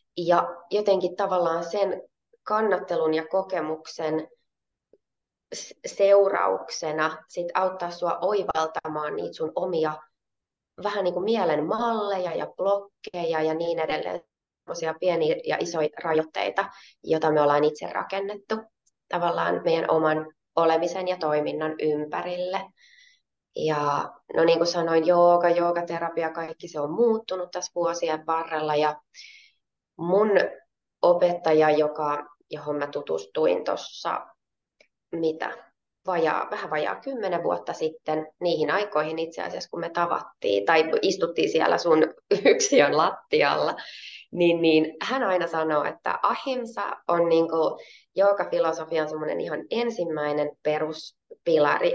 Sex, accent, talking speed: female, native, 110 wpm